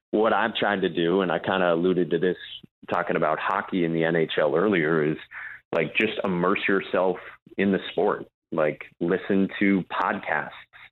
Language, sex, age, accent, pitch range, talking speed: English, male, 30-49, American, 80-95 Hz, 170 wpm